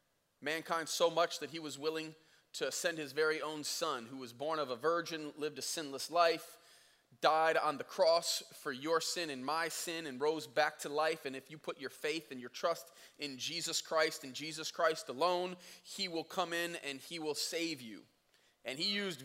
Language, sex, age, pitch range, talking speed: English, male, 30-49, 165-230 Hz, 205 wpm